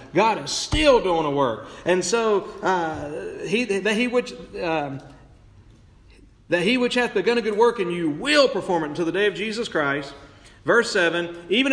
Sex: male